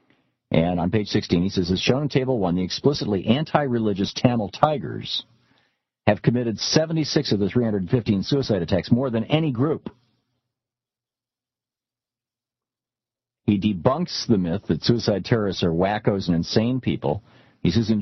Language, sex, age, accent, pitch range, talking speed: English, male, 50-69, American, 100-130 Hz, 145 wpm